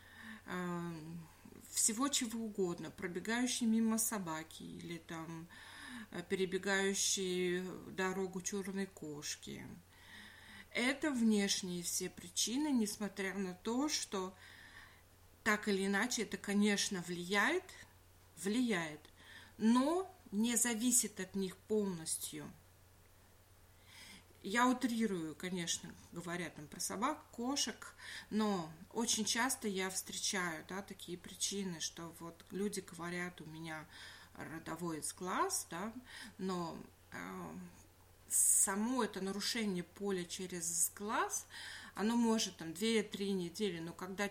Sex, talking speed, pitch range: female, 100 wpm, 170-215 Hz